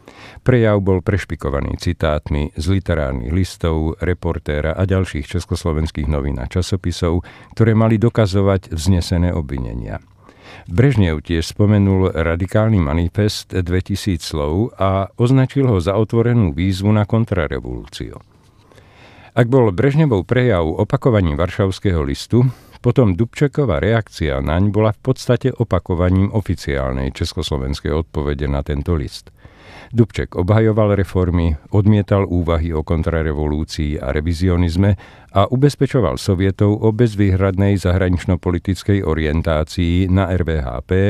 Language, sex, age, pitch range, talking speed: Czech, male, 50-69, 85-105 Hz, 105 wpm